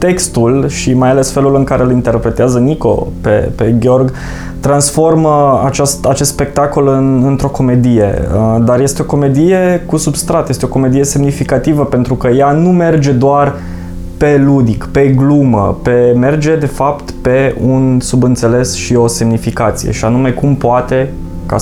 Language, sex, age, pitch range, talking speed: Romanian, male, 20-39, 120-150 Hz, 155 wpm